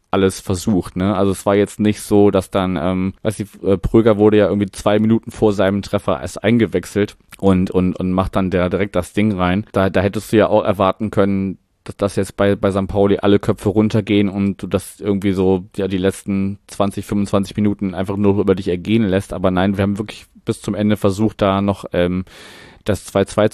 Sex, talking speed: male, 210 wpm